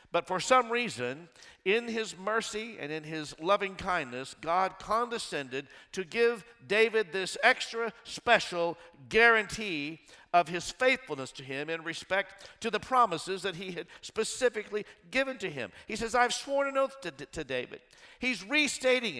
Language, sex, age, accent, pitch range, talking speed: English, male, 50-69, American, 140-220 Hz, 155 wpm